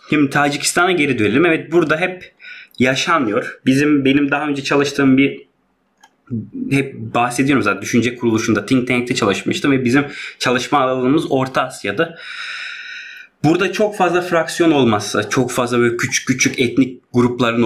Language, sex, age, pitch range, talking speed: Turkish, male, 30-49, 120-145 Hz, 135 wpm